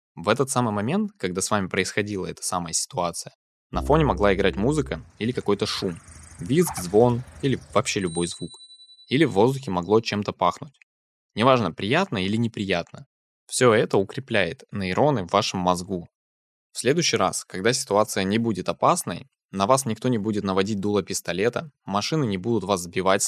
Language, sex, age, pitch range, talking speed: Russian, male, 20-39, 95-120 Hz, 160 wpm